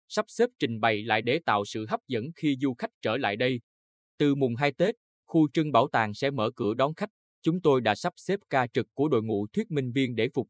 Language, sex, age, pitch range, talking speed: Vietnamese, male, 20-39, 115-155 Hz, 250 wpm